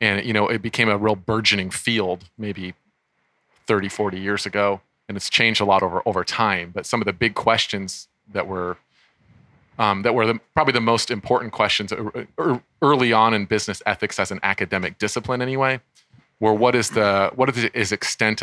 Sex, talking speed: male, 180 wpm